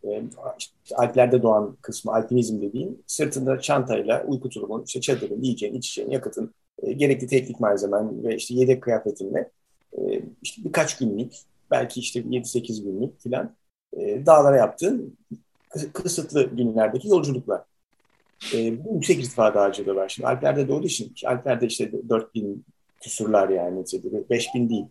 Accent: native